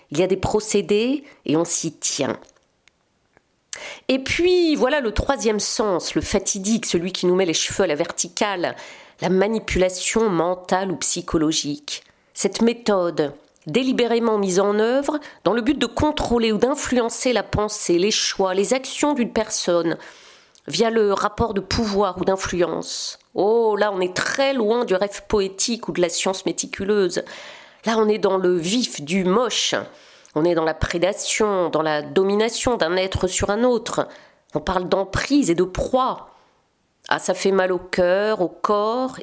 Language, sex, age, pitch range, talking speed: French, female, 40-59, 180-240 Hz, 170 wpm